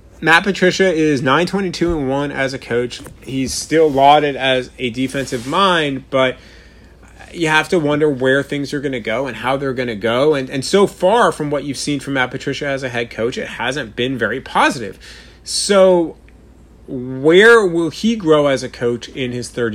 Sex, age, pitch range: male, 30-49, 120-150 Hz